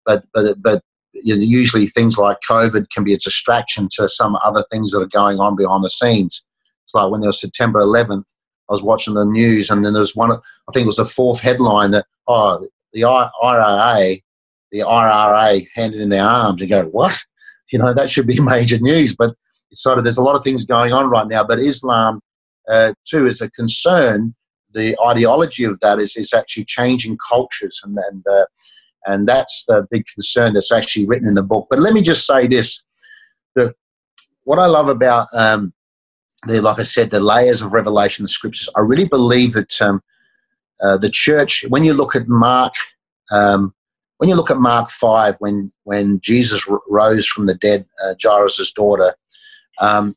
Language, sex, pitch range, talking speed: English, male, 105-125 Hz, 195 wpm